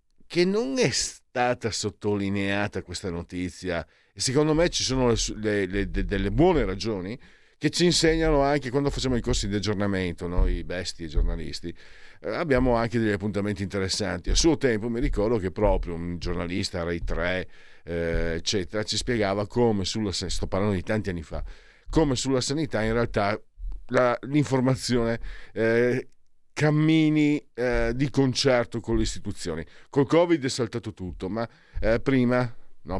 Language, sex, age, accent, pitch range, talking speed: Italian, male, 50-69, native, 90-120 Hz, 150 wpm